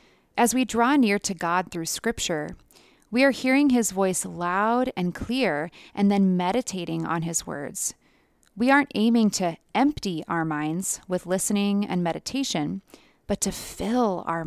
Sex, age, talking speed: female, 20-39, 155 wpm